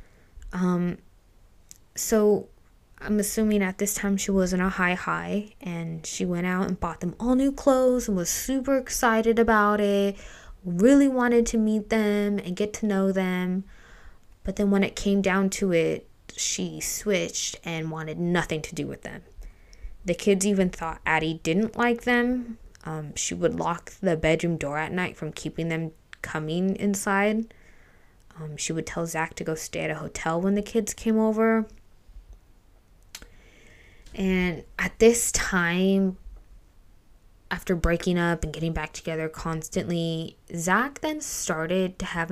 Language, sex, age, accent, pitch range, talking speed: English, female, 20-39, American, 160-210 Hz, 155 wpm